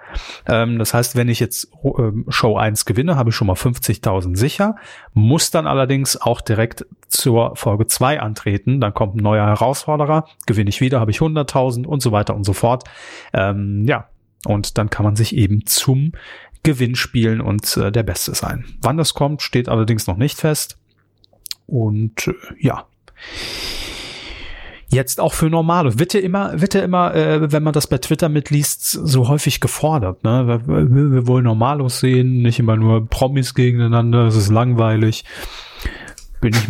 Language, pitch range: German, 110-140 Hz